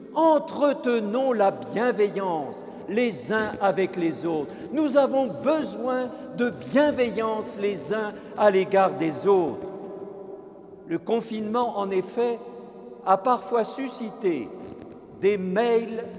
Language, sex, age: French, male, 50-69